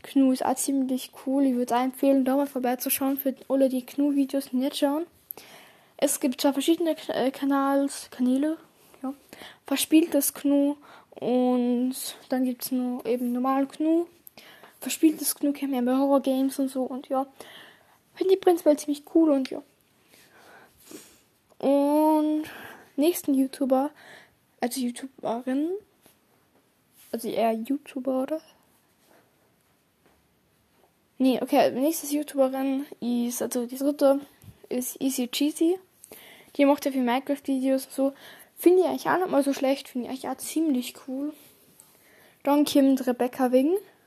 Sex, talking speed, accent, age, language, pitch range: female, 135 wpm, German, 10-29, German, 255-285 Hz